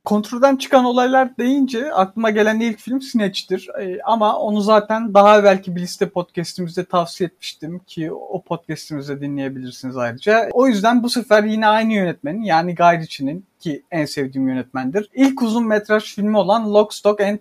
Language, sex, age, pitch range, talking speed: Turkish, male, 50-69, 185-225 Hz, 160 wpm